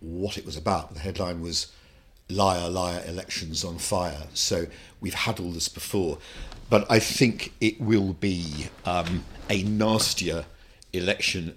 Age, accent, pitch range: 50-69, British, 75-95 Hz